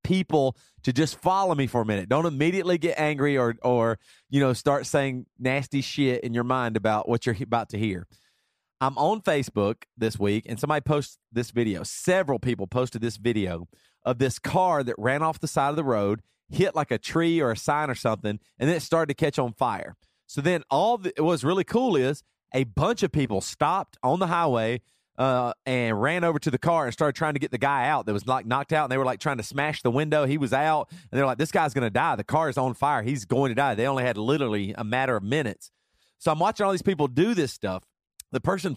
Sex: male